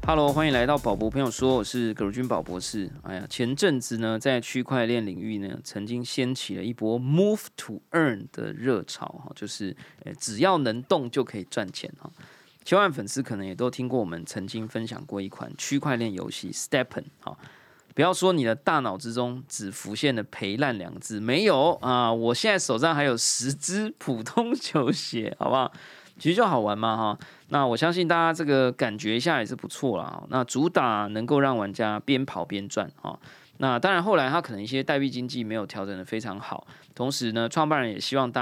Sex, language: male, Chinese